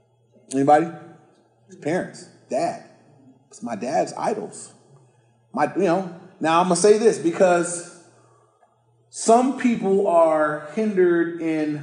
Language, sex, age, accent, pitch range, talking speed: English, male, 30-49, American, 140-190 Hz, 115 wpm